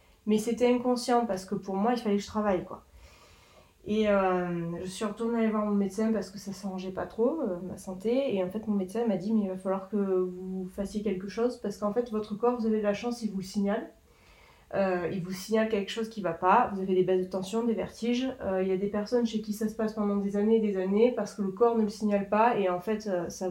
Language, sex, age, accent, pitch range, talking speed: French, female, 20-39, French, 190-225 Hz, 275 wpm